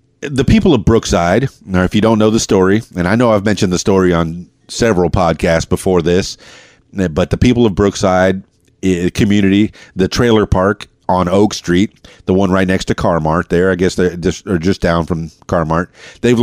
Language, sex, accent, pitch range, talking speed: English, male, American, 85-105 Hz, 190 wpm